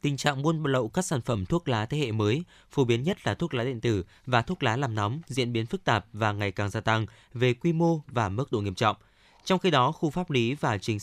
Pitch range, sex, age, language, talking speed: 110-145 Hz, male, 20-39, Vietnamese, 270 wpm